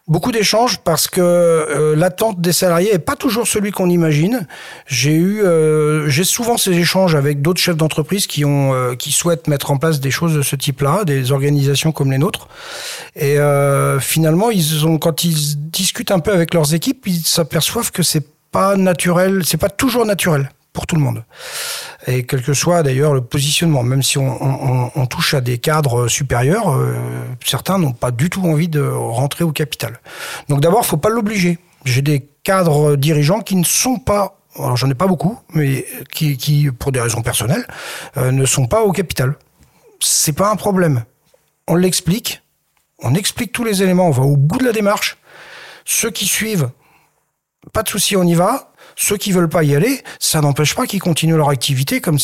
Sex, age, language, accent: male, 40-59, French, French